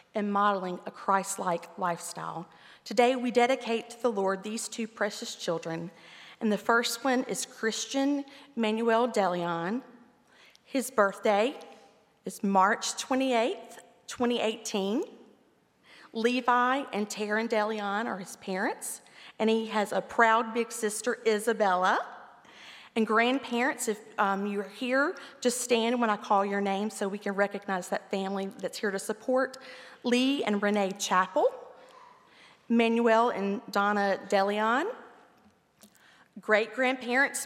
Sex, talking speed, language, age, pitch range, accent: female, 125 wpm, English, 40-59, 200-250 Hz, American